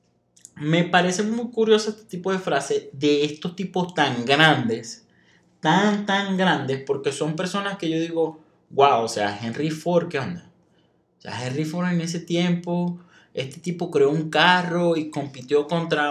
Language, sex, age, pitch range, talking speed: Spanish, male, 20-39, 145-180 Hz, 165 wpm